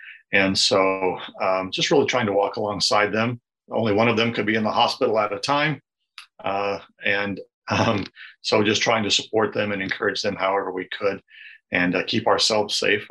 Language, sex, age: English, male, 40-59